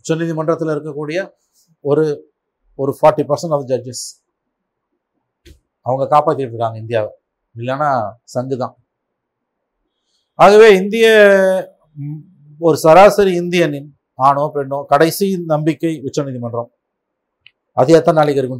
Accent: native